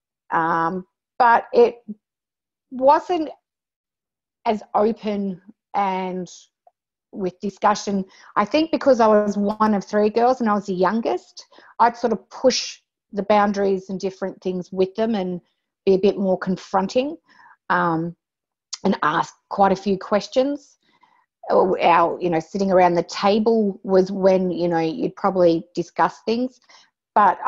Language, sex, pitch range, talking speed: English, female, 180-215 Hz, 140 wpm